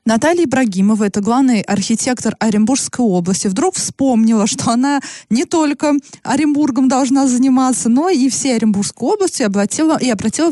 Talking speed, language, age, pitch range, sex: 130 wpm, Russian, 20-39, 195-255 Hz, female